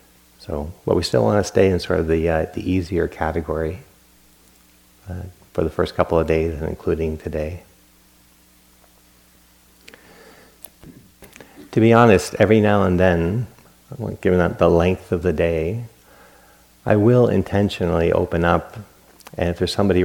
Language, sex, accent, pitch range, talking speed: English, male, American, 80-90 Hz, 140 wpm